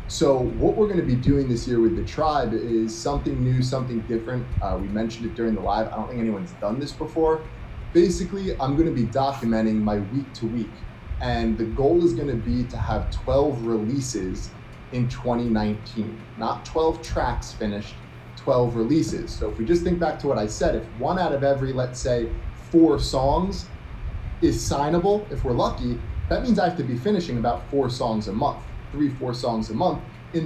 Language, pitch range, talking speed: English, 115-145 Hz, 195 wpm